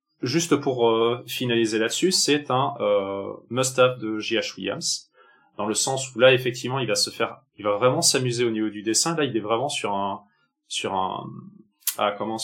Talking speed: 190 wpm